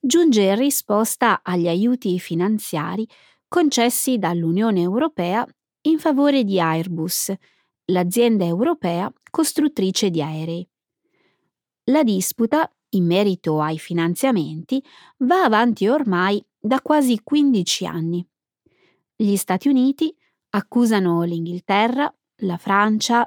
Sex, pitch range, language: female, 175-265 Hz, Italian